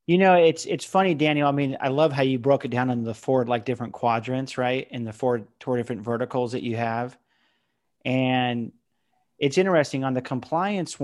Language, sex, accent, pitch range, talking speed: English, male, American, 120-140 Hz, 200 wpm